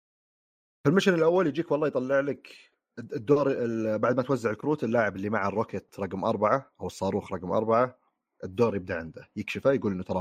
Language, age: Arabic, 30-49